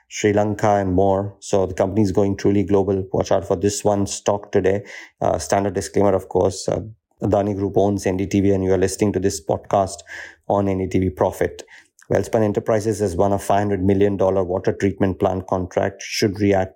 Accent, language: Indian, English